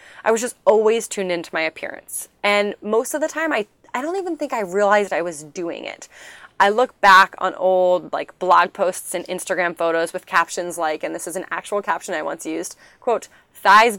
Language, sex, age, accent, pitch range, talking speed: English, female, 20-39, American, 180-230 Hz, 210 wpm